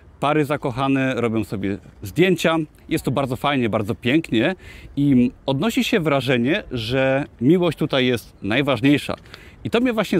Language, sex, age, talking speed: Polish, male, 30-49, 140 wpm